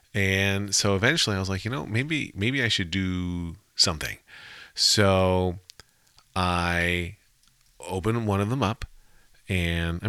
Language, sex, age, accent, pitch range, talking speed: English, male, 40-59, American, 90-110 Hz, 135 wpm